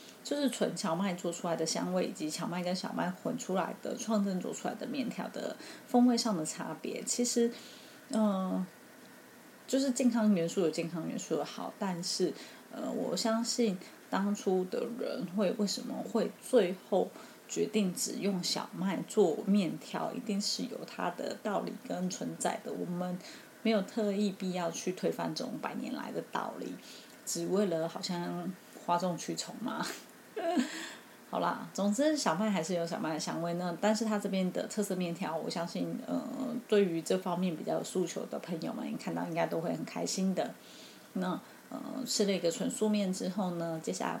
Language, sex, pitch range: Chinese, female, 180-230 Hz